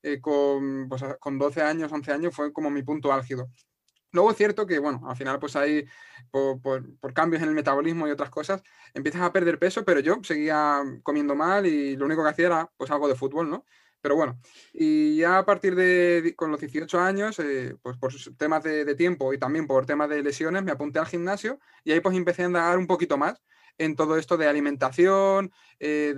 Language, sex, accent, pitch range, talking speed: English, male, Spanish, 145-180 Hz, 220 wpm